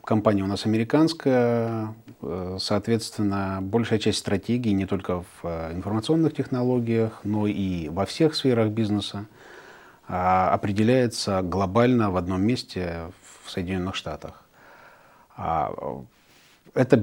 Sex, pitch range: male, 90-115 Hz